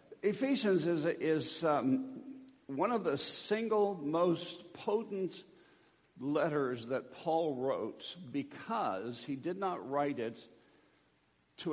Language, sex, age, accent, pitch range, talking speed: English, male, 60-79, American, 120-160 Hz, 105 wpm